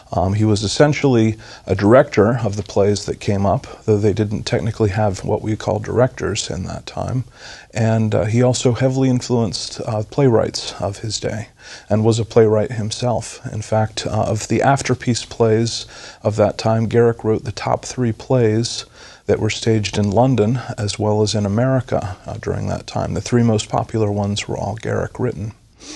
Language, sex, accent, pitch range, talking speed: English, male, American, 105-120 Hz, 185 wpm